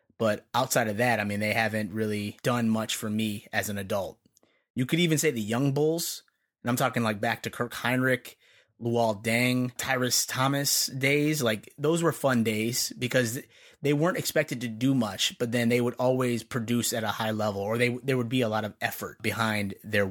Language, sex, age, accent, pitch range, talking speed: English, male, 30-49, American, 115-135 Hz, 205 wpm